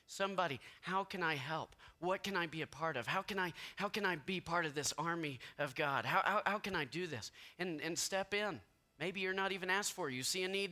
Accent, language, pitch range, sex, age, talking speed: American, English, 110-180 Hz, male, 30-49, 265 wpm